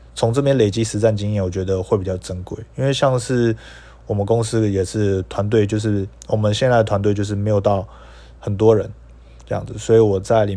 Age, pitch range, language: 20-39, 95-115 Hz, Chinese